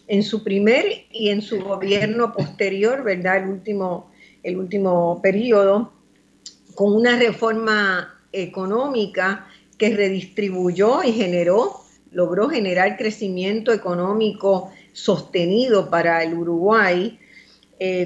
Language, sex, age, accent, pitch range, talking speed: Spanish, female, 50-69, American, 180-215 Hz, 105 wpm